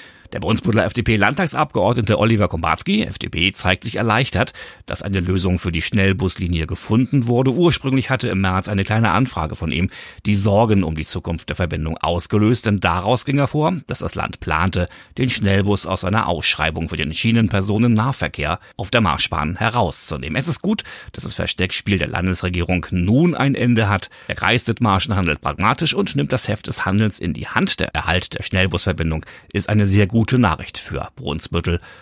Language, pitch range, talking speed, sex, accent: German, 85-120 Hz, 175 wpm, male, German